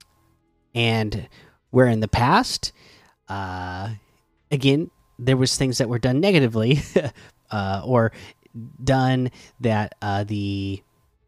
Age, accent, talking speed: 30-49, American, 105 wpm